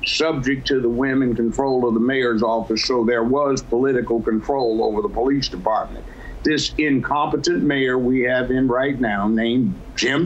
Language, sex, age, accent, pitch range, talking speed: English, male, 60-79, American, 120-135 Hz, 170 wpm